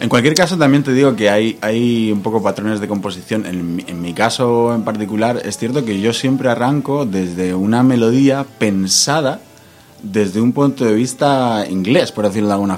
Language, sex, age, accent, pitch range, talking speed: Spanish, male, 30-49, Spanish, 100-125 Hz, 190 wpm